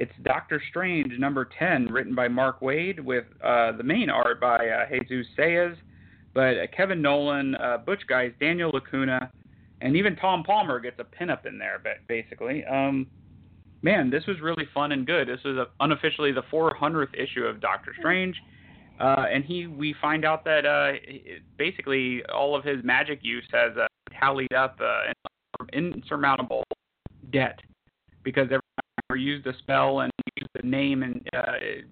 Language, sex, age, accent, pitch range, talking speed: English, male, 30-49, American, 125-145 Hz, 170 wpm